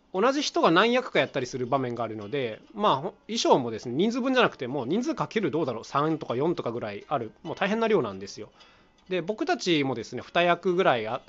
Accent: native